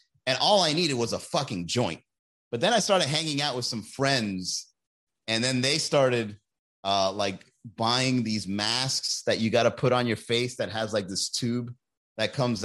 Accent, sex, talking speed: American, male, 195 wpm